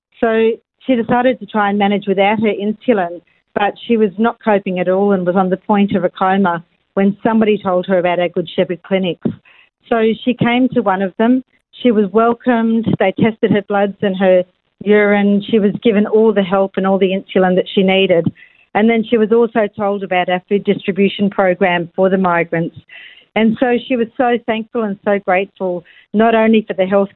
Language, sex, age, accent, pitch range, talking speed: English, female, 50-69, Australian, 190-220 Hz, 205 wpm